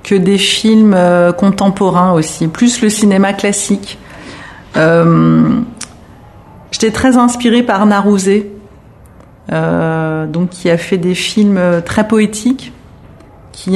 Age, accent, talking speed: 40-59, French, 110 wpm